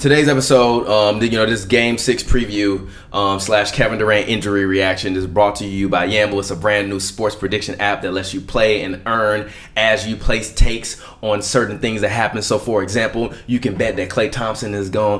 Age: 20-39